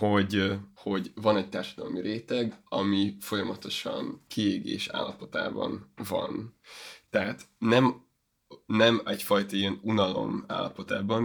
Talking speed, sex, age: 95 wpm, male, 20-39